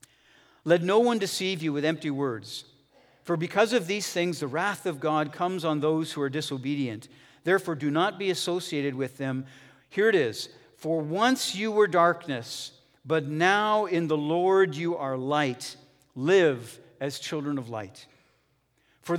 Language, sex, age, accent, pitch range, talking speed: English, male, 50-69, American, 130-175 Hz, 165 wpm